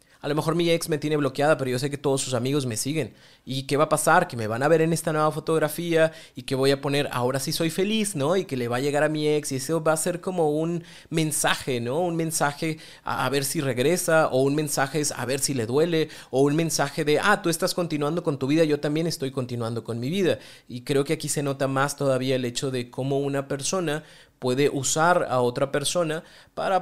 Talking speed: 250 wpm